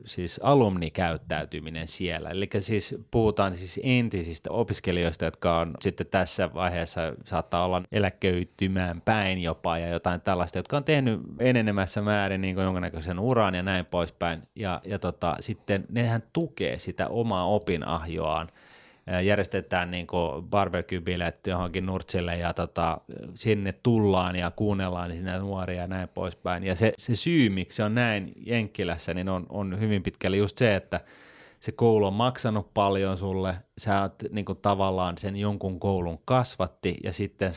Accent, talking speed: native, 145 wpm